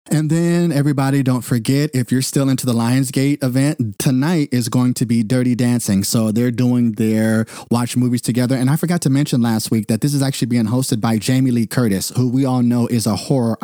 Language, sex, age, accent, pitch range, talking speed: English, male, 30-49, American, 115-135 Hz, 220 wpm